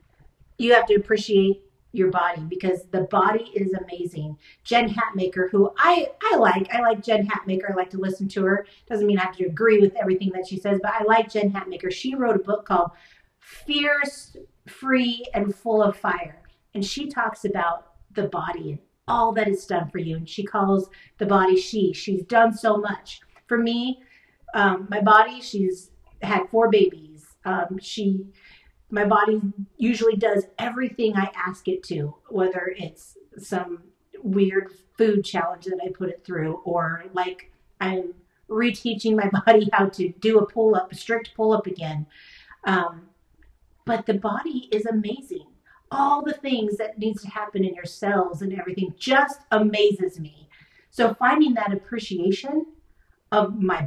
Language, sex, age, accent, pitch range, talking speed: English, female, 40-59, American, 185-225 Hz, 165 wpm